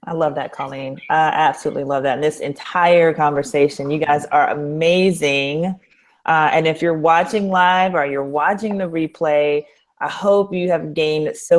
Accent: American